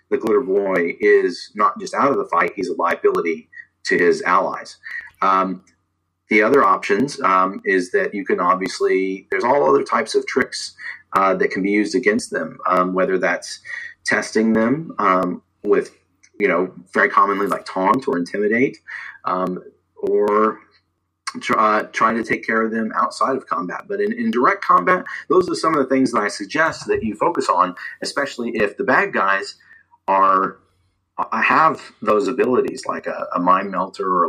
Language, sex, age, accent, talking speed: English, male, 30-49, American, 175 wpm